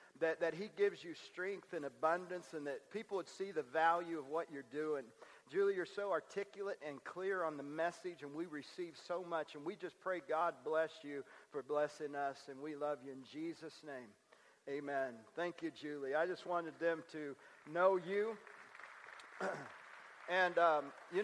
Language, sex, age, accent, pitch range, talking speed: English, male, 50-69, American, 155-200 Hz, 180 wpm